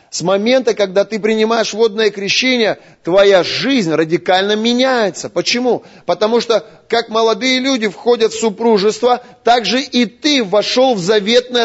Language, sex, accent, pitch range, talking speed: Russian, male, native, 215-255 Hz, 140 wpm